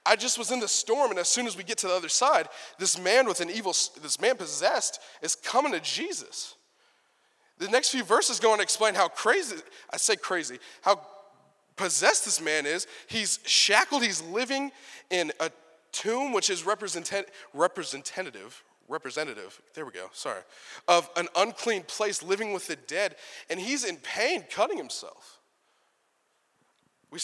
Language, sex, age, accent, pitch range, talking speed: English, male, 20-39, American, 180-255 Hz, 165 wpm